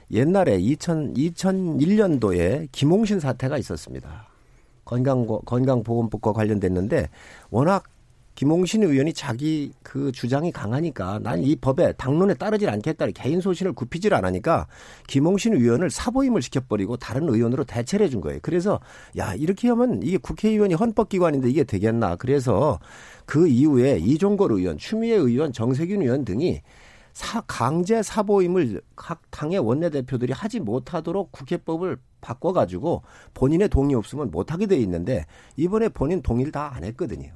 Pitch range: 125-195 Hz